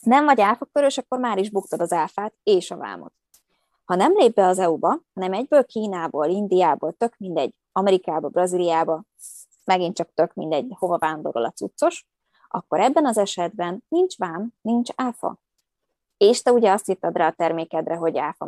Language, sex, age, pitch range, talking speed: Hungarian, female, 20-39, 175-235 Hz, 170 wpm